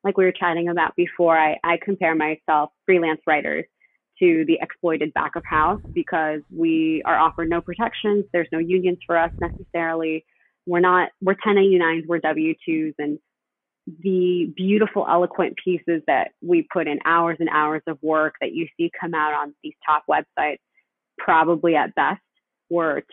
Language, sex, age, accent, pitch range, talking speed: English, female, 20-39, American, 160-190 Hz, 165 wpm